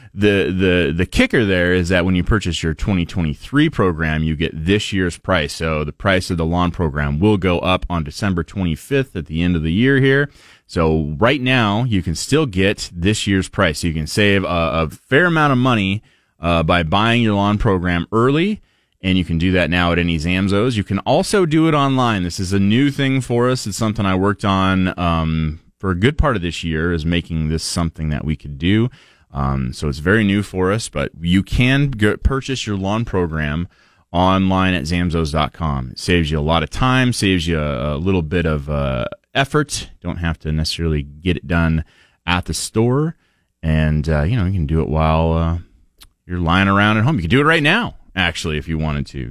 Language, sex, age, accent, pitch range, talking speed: English, male, 30-49, American, 80-105 Hz, 215 wpm